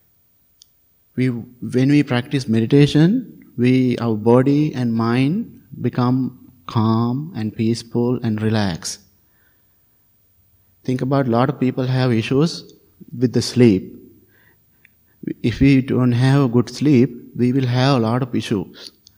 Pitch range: 105-125 Hz